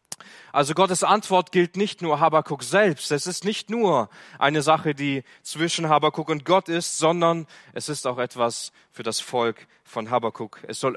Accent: German